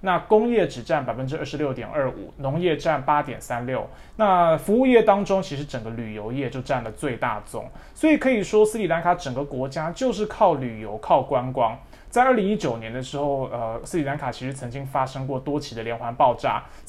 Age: 20-39